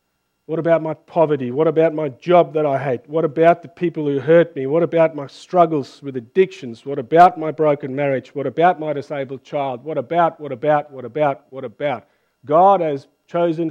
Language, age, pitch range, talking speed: English, 50-69, 135-185 Hz, 195 wpm